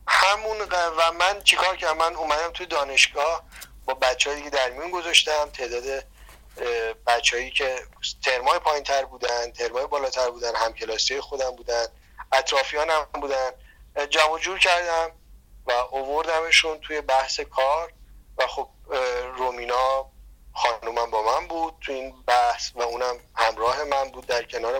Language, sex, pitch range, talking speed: Persian, male, 125-160 Hz, 135 wpm